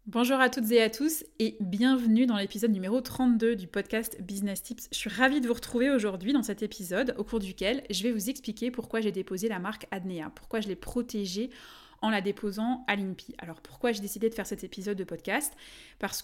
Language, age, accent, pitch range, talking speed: French, 20-39, French, 195-235 Hz, 220 wpm